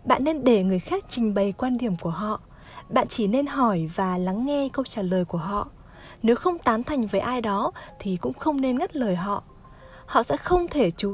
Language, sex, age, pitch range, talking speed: Vietnamese, female, 20-39, 195-270 Hz, 225 wpm